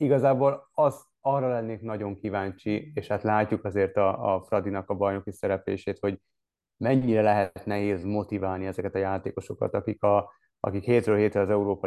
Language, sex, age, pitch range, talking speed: Hungarian, male, 30-49, 95-105 Hz, 155 wpm